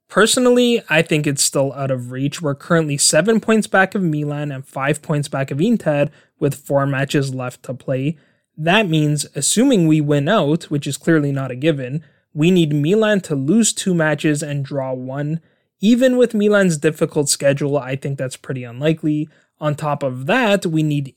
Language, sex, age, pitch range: English, male, 20-39, 140-170 Hz